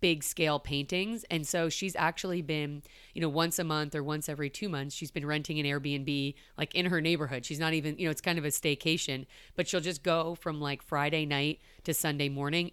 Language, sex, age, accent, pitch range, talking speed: English, female, 30-49, American, 145-170 Hz, 225 wpm